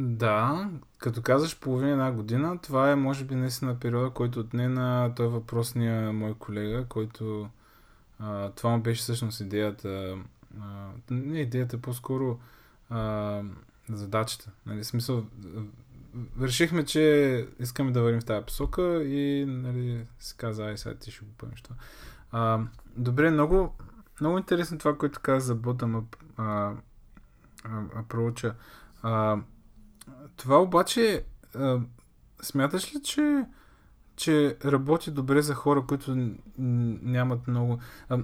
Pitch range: 115-140 Hz